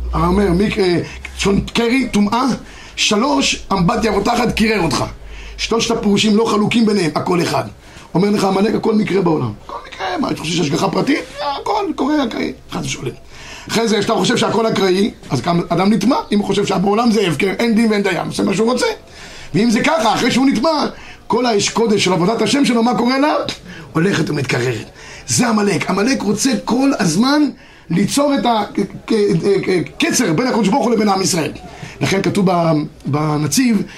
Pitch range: 190-240 Hz